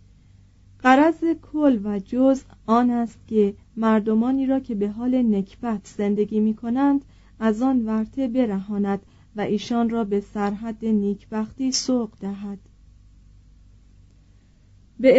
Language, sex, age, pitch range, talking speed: Persian, female, 40-59, 200-245 Hz, 115 wpm